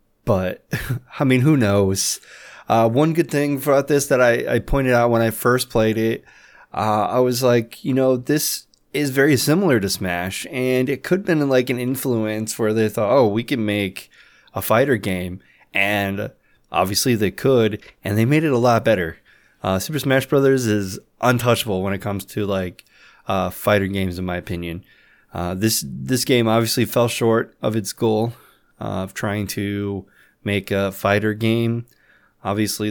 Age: 20-39